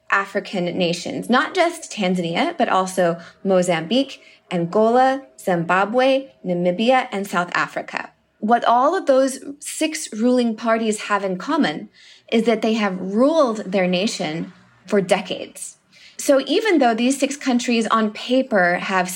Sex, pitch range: female, 185-260 Hz